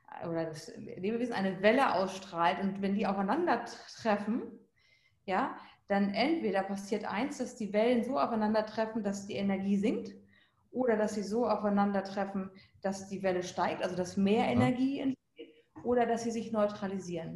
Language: German